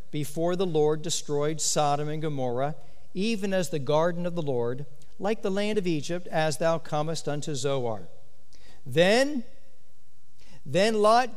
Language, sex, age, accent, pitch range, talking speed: English, male, 50-69, American, 140-175 Hz, 145 wpm